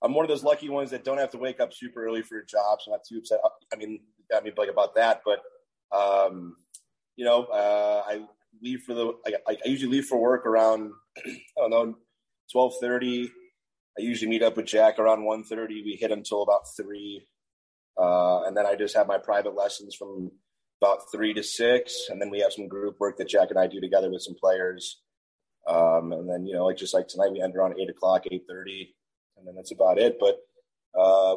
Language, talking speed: English, 220 wpm